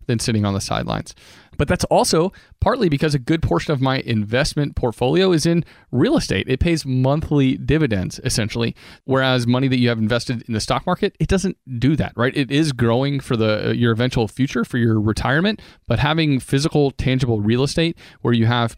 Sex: male